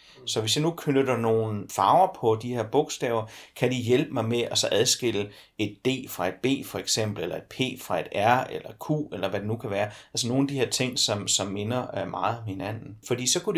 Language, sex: Danish, male